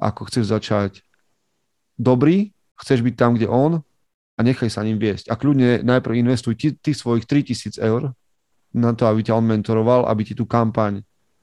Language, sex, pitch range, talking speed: Slovak, male, 110-135 Hz, 180 wpm